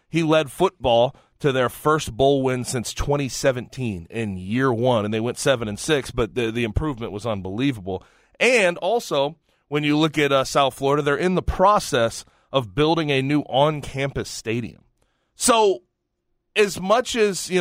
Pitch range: 115-145 Hz